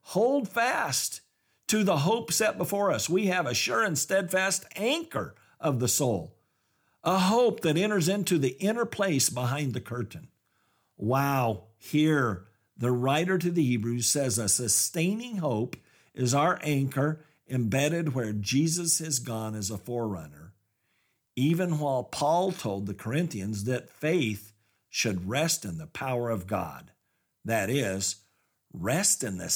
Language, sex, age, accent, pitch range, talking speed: English, male, 50-69, American, 115-185 Hz, 145 wpm